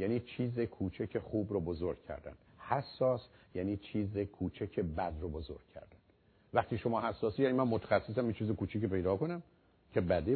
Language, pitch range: Persian, 110-160 Hz